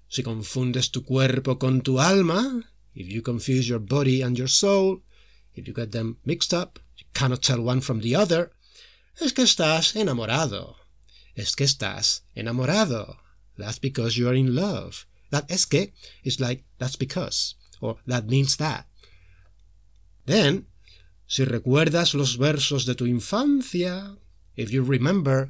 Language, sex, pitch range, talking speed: English, male, 110-145 Hz, 150 wpm